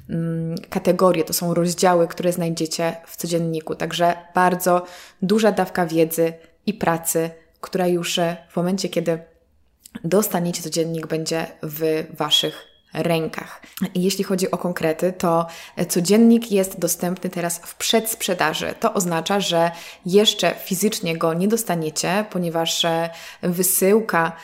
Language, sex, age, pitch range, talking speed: Polish, female, 20-39, 165-195 Hz, 115 wpm